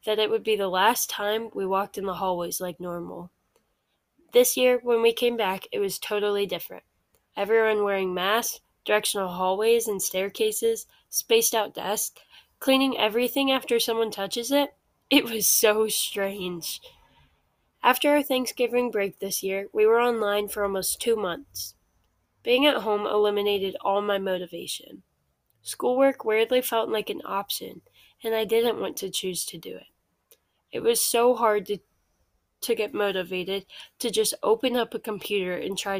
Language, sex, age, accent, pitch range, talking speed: English, female, 10-29, American, 190-235 Hz, 160 wpm